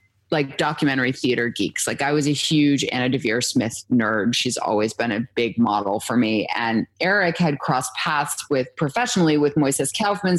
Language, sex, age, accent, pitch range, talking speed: English, female, 30-49, American, 135-175 Hz, 180 wpm